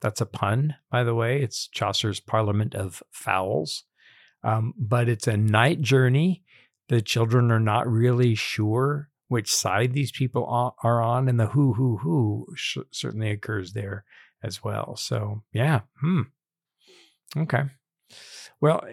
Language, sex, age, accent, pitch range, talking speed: English, male, 50-69, American, 110-130 Hz, 145 wpm